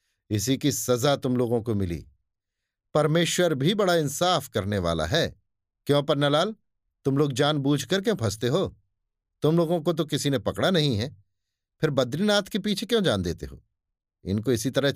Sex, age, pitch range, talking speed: male, 50-69, 100-155 Hz, 175 wpm